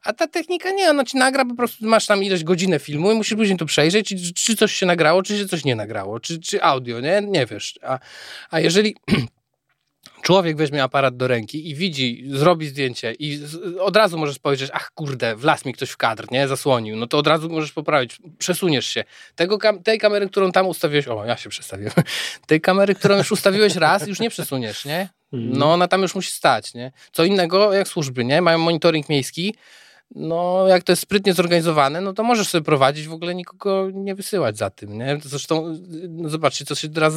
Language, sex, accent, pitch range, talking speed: Polish, male, native, 130-185 Hz, 210 wpm